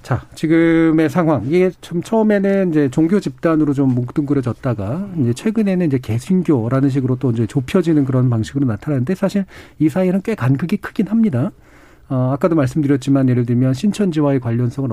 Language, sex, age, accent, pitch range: Korean, male, 40-59, native, 125-165 Hz